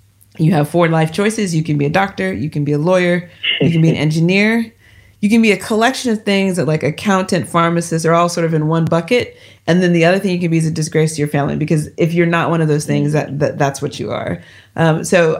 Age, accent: 30-49, American